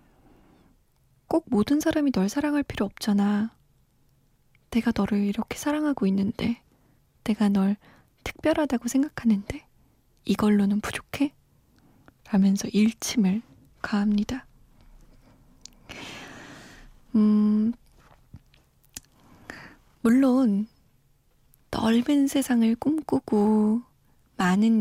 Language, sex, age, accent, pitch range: Korean, female, 20-39, native, 210-265 Hz